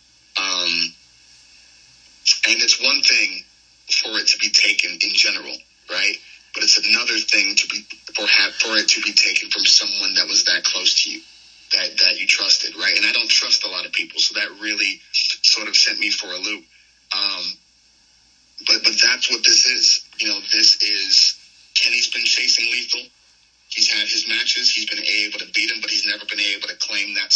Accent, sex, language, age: American, male, English, 30-49